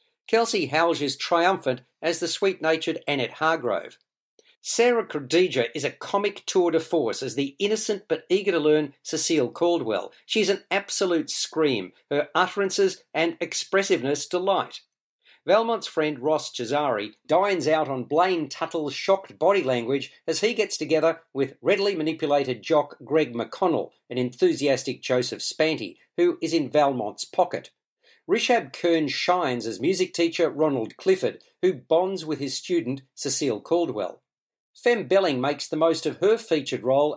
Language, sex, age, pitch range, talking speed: English, male, 50-69, 145-195 Hz, 145 wpm